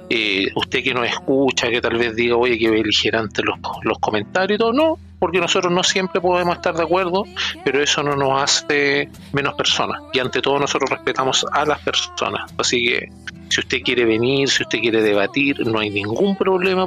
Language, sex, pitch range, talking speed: Spanish, male, 120-155 Hz, 200 wpm